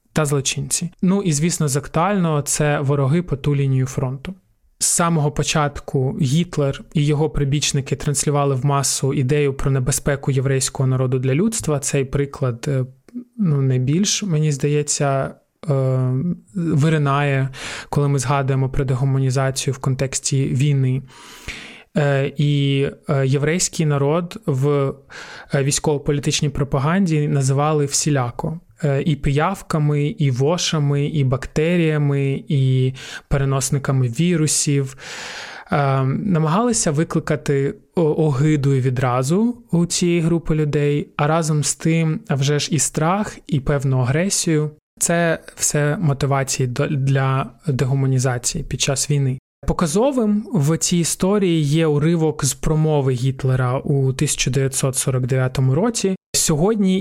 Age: 20-39